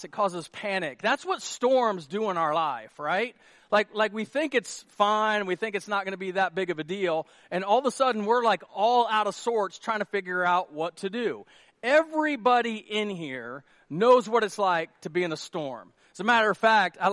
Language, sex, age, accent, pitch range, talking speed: English, male, 40-59, American, 185-240 Hz, 230 wpm